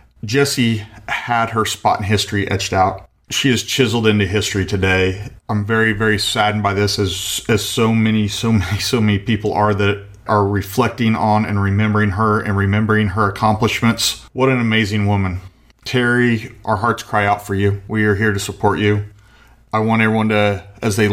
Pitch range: 100-115 Hz